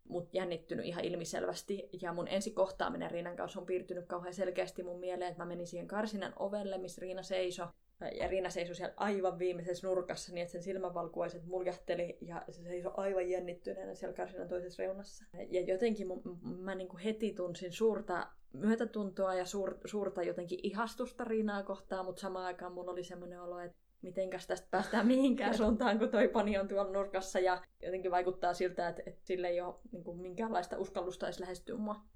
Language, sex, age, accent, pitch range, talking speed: Finnish, female, 20-39, native, 175-195 Hz, 185 wpm